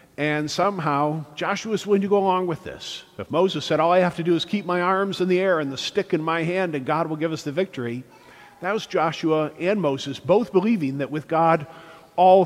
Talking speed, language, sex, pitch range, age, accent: 235 wpm, English, male, 140-170 Hz, 50-69, American